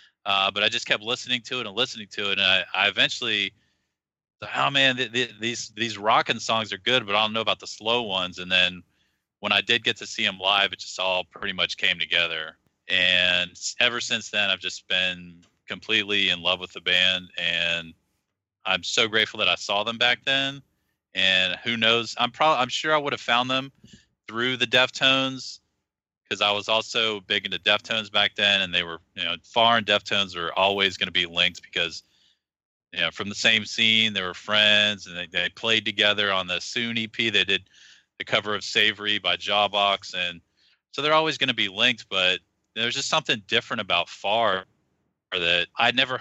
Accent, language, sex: American, English, male